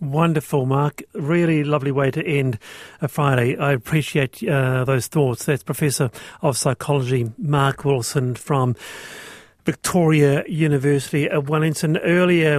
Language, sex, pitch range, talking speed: English, male, 130-160 Hz, 125 wpm